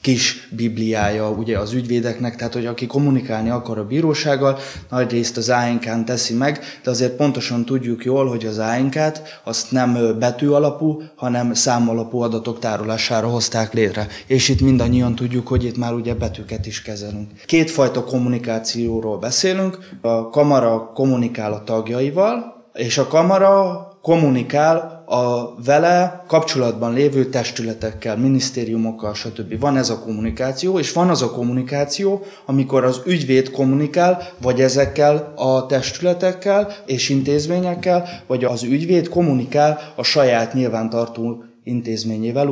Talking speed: 130 wpm